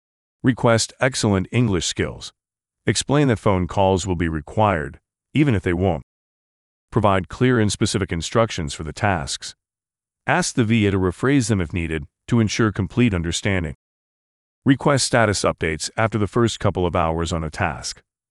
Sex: male